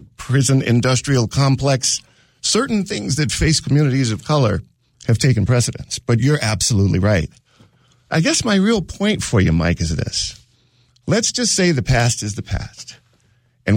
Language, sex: English, male